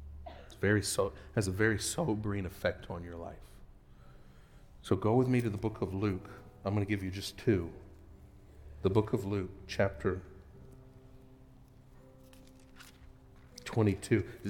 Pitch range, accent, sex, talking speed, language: 80-115 Hz, American, male, 135 wpm, English